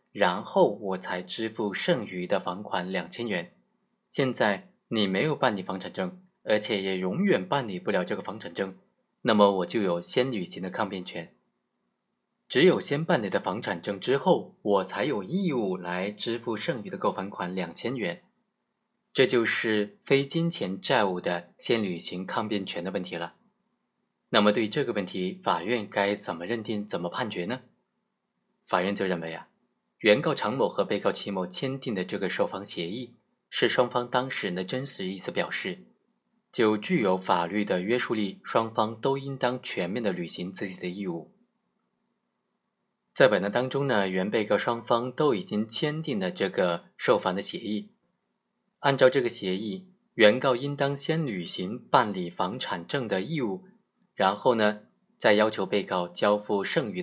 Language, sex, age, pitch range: Chinese, male, 20-39, 95-135 Hz